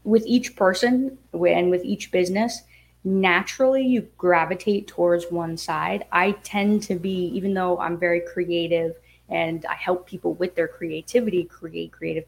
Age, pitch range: 20-39, 165-195 Hz